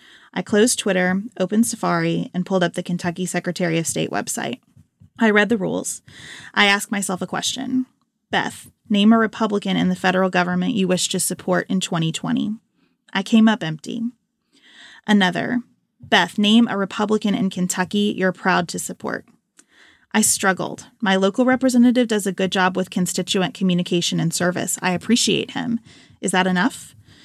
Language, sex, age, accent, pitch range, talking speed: English, female, 20-39, American, 180-220 Hz, 160 wpm